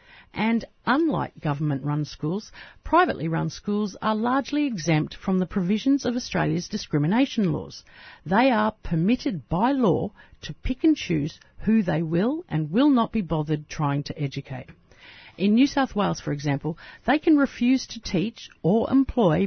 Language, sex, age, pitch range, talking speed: English, female, 50-69, 160-245 Hz, 150 wpm